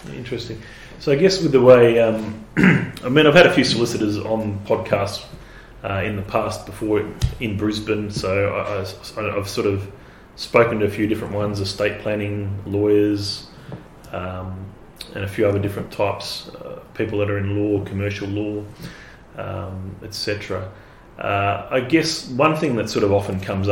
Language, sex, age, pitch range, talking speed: English, male, 30-49, 95-110 Hz, 165 wpm